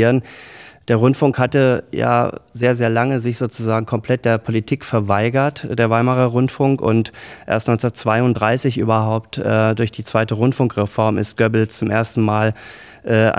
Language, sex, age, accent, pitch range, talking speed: German, male, 20-39, German, 110-125 Hz, 140 wpm